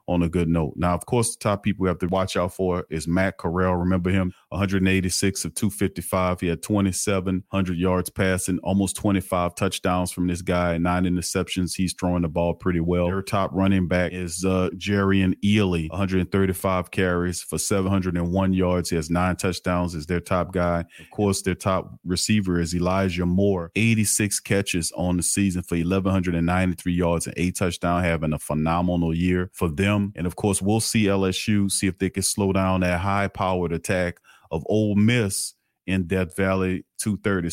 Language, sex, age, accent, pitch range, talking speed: English, male, 40-59, American, 90-100 Hz, 175 wpm